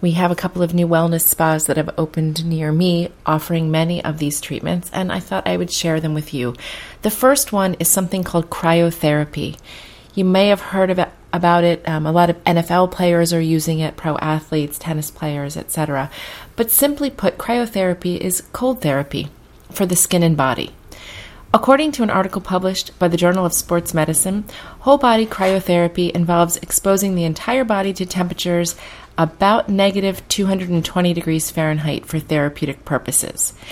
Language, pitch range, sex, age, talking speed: English, 155-190 Hz, female, 30-49, 175 wpm